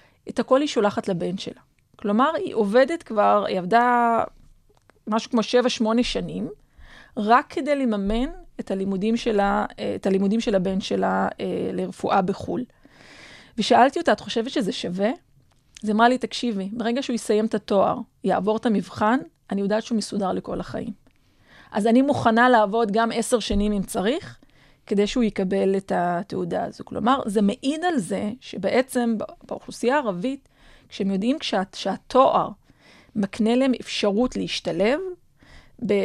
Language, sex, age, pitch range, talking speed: Hebrew, female, 30-49, 200-245 Hz, 140 wpm